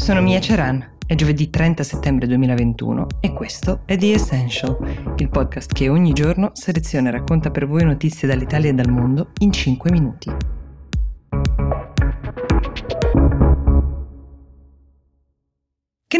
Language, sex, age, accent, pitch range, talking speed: Italian, female, 20-39, native, 130-165 Hz, 120 wpm